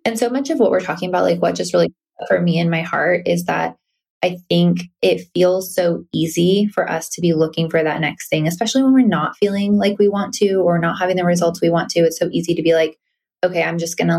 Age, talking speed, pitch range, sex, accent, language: 20-39, 260 wpm, 160-180 Hz, female, American, English